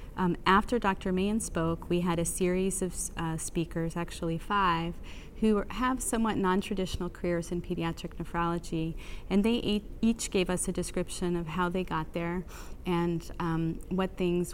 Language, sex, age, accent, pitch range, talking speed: English, female, 30-49, American, 165-185 Hz, 155 wpm